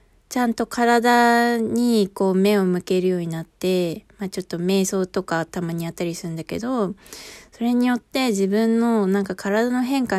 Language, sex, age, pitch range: Japanese, female, 20-39, 175-220 Hz